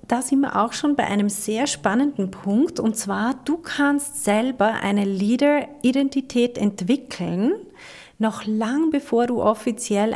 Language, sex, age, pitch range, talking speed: German, female, 40-59, 195-245 Hz, 135 wpm